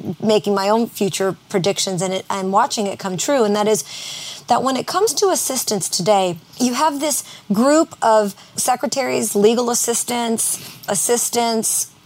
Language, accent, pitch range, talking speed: English, American, 195-240 Hz, 155 wpm